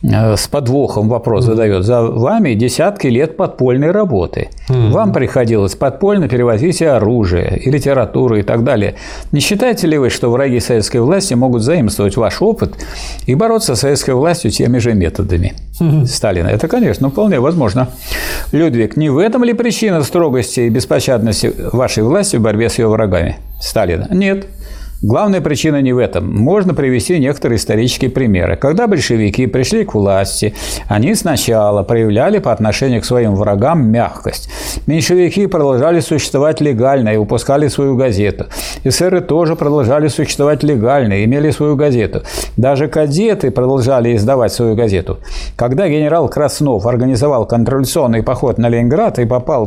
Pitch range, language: 115-150 Hz, Russian